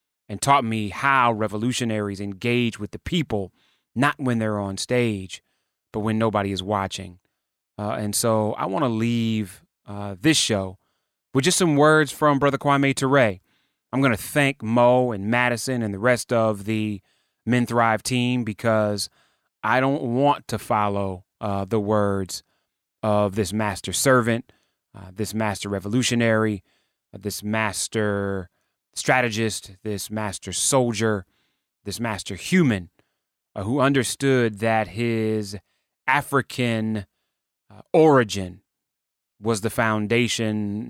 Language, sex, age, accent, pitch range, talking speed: English, male, 30-49, American, 100-120 Hz, 130 wpm